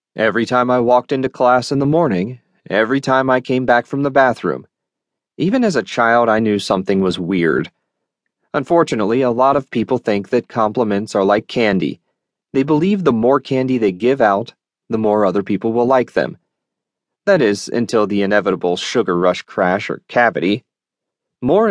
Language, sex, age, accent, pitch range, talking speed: English, male, 30-49, American, 115-145 Hz, 175 wpm